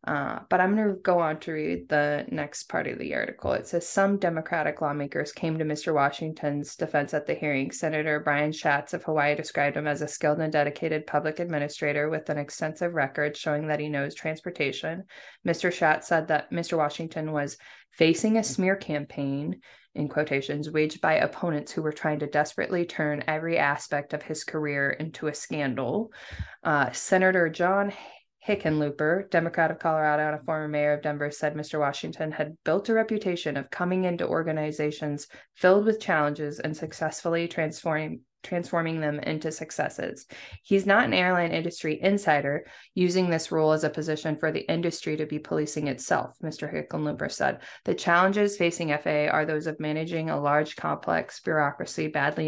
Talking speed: 170 wpm